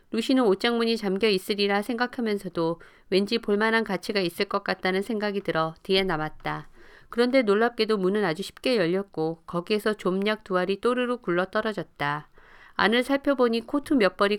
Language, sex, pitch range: Korean, female, 175-225 Hz